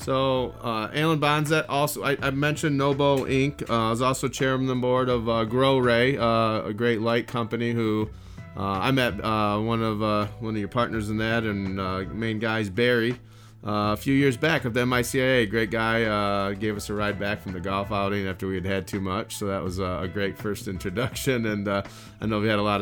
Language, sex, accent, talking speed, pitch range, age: English, male, American, 230 wpm, 95-115 Hz, 30-49